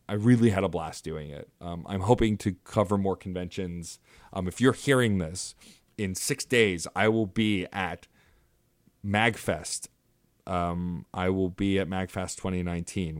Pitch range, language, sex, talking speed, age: 85-105 Hz, English, male, 155 wpm, 30-49